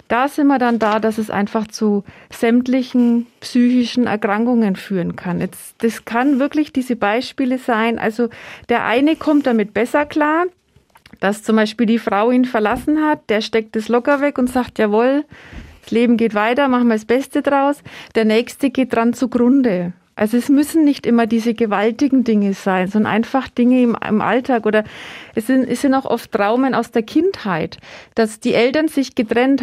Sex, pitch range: female, 220-255 Hz